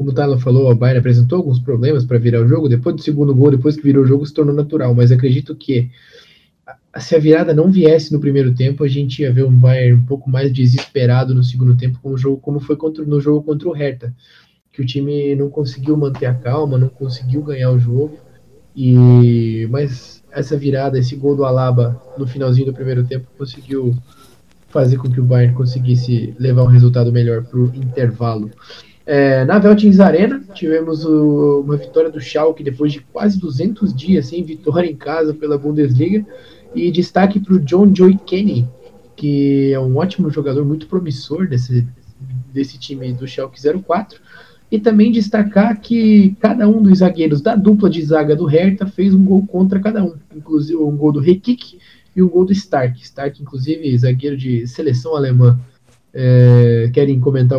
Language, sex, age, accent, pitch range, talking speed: Portuguese, male, 20-39, Brazilian, 125-160 Hz, 180 wpm